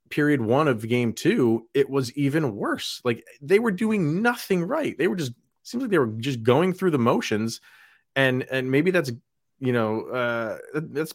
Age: 30-49